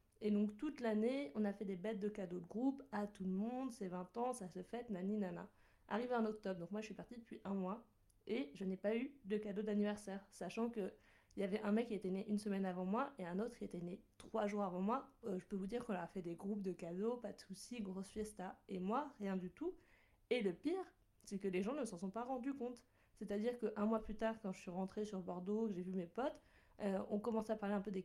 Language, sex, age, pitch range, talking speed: French, female, 20-39, 190-235 Hz, 270 wpm